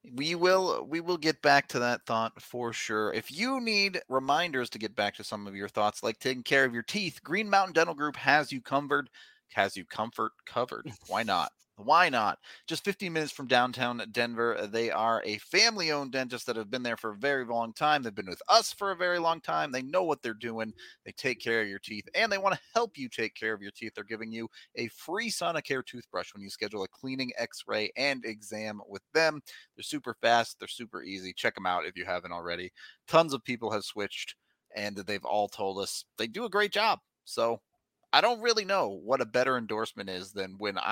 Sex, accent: male, American